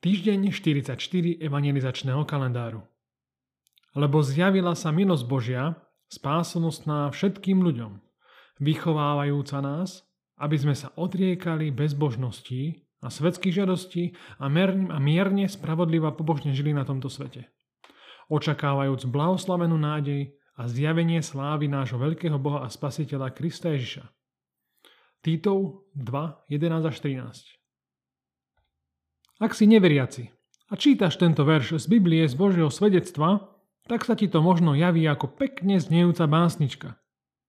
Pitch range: 140-180 Hz